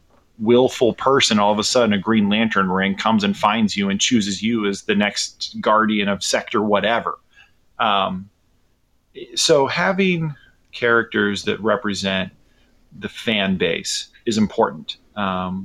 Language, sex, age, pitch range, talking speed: English, male, 30-49, 95-125 Hz, 140 wpm